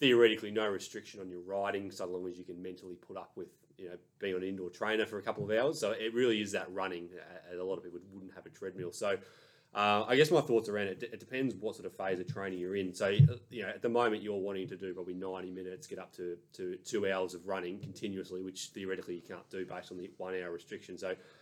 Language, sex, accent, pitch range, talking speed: English, male, Australian, 95-115 Hz, 260 wpm